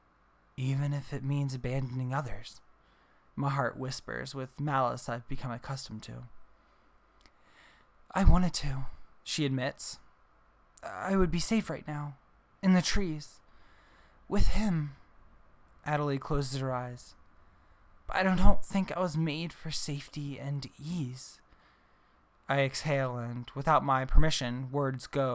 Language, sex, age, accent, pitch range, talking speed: English, male, 20-39, American, 120-150 Hz, 130 wpm